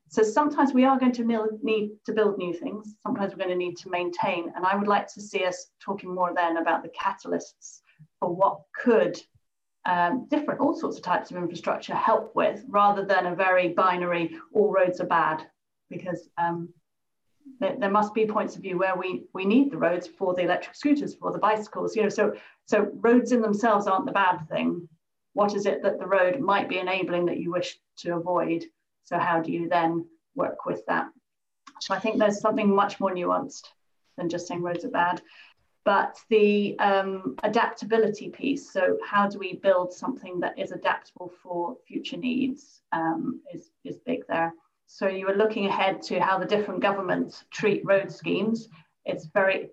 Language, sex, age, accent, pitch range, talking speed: English, female, 30-49, British, 180-220 Hz, 190 wpm